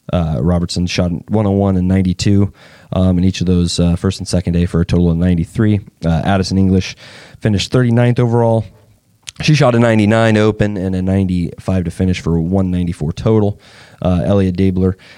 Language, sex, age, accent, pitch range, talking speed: English, male, 20-39, American, 85-95 Hz, 170 wpm